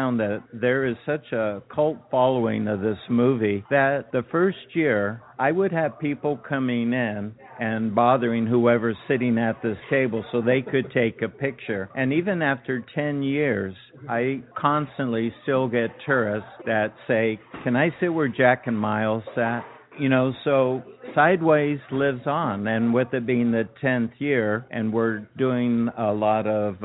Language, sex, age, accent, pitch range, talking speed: English, male, 60-79, American, 110-135 Hz, 160 wpm